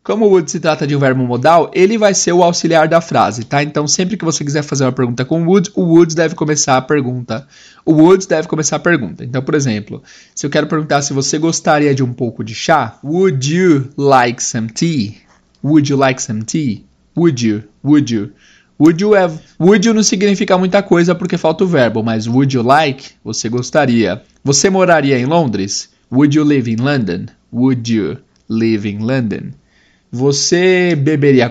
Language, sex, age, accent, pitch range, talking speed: Portuguese, male, 20-39, Brazilian, 120-160 Hz, 200 wpm